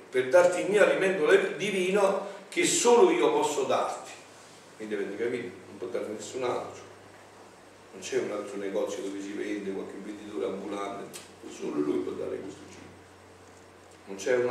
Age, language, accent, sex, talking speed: 50-69, Italian, native, male, 160 wpm